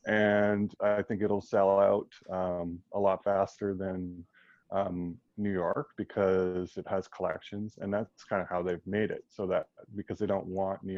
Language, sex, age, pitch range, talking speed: English, male, 20-39, 90-105 Hz, 180 wpm